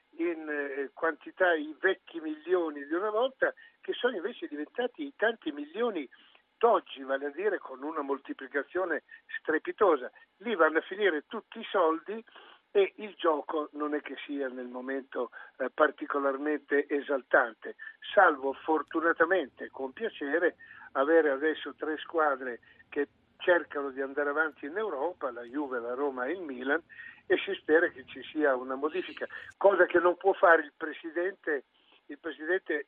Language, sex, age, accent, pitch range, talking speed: Italian, male, 50-69, native, 145-235 Hz, 150 wpm